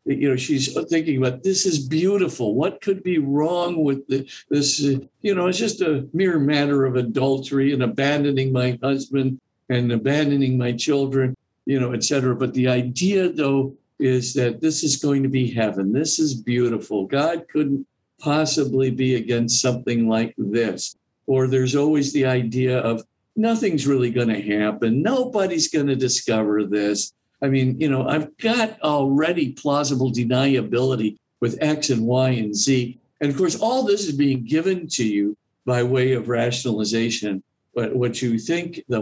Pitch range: 120-145 Hz